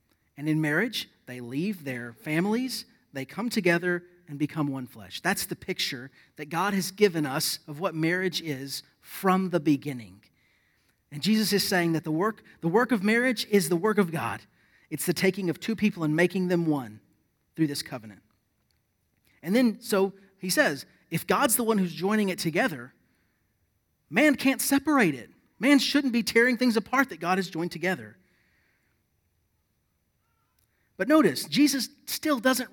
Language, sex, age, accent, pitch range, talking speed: English, male, 40-59, American, 155-235 Hz, 165 wpm